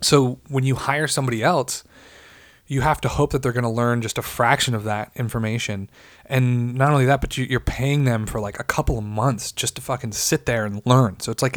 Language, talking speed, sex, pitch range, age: English, 240 wpm, male, 105-130 Hz, 20-39